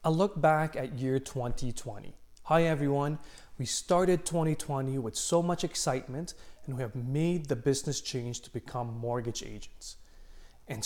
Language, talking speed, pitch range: English, 150 wpm, 120-160 Hz